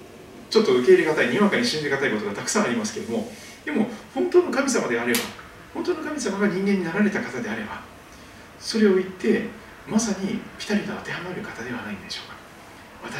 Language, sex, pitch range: Japanese, male, 185-225 Hz